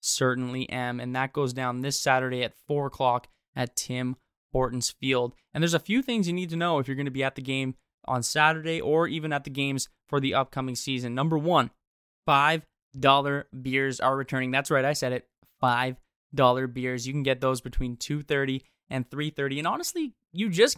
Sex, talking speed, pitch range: male, 205 wpm, 130-155 Hz